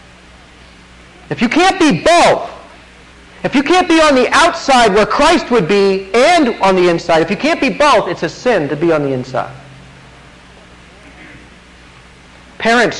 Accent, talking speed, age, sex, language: American, 155 wpm, 50-69, male, English